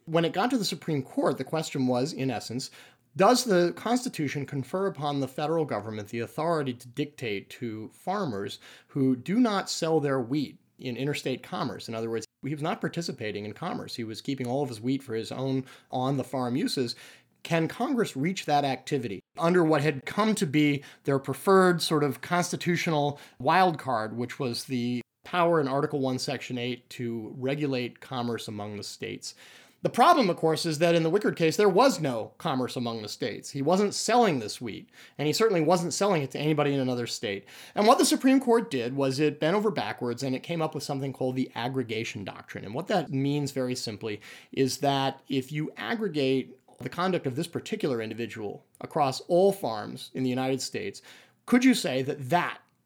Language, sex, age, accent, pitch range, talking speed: English, male, 30-49, American, 125-170 Hz, 195 wpm